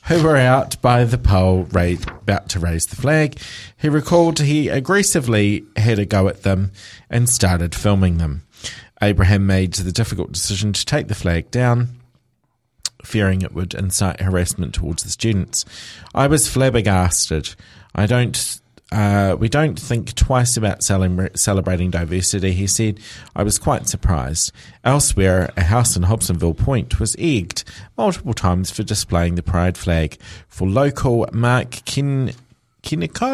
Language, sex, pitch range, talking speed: English, male, 90-125 Hz, 145 wpm